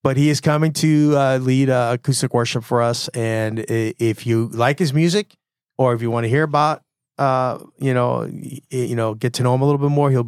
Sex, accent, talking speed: male, American, 230 wpm